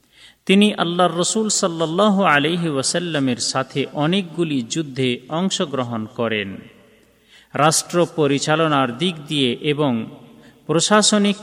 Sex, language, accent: male, Bengali, native